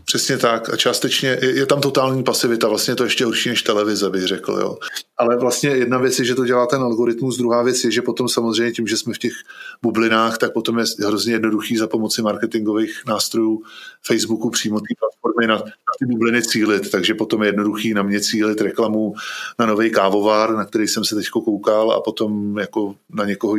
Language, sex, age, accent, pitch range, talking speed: Czech, male, 20-39, native, 105-120 Hz, 205 wpm